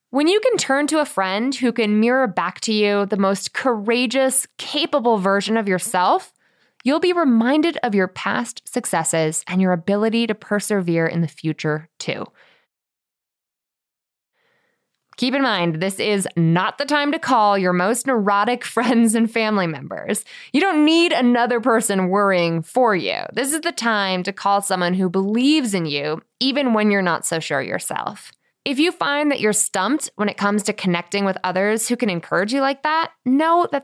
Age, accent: 20-39, American